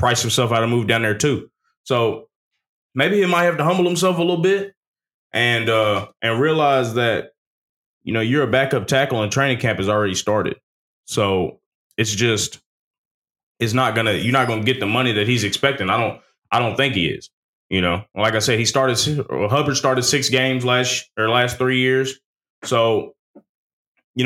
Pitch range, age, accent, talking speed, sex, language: 115-145 Hz, 20-39, American, 195 wpm, male, English